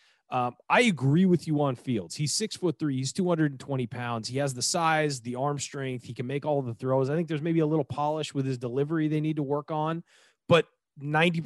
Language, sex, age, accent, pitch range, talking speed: English, male, 30-49, American, 130-175 Hz, 230 wpm